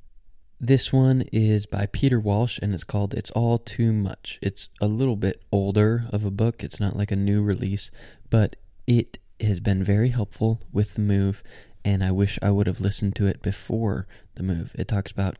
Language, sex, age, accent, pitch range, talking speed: English, male, 20-39, American, 95-110 Hz, 200 wpm